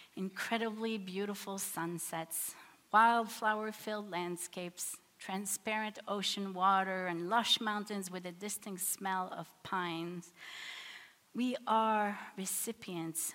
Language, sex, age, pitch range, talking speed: English, female, 40-59, 170-210 Hz, 90 wpm